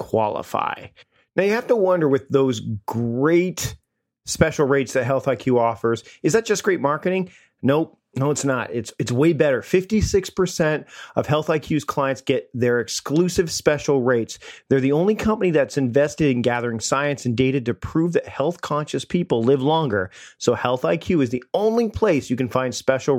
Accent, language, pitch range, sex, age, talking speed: American, English, 125-175 Hz, male, 40-59, 180 wpm